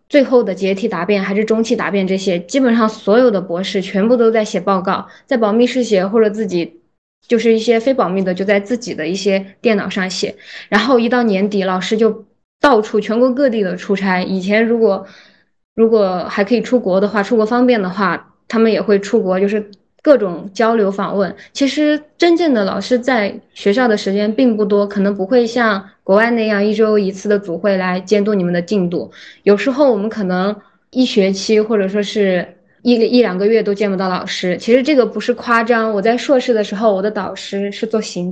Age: 20-39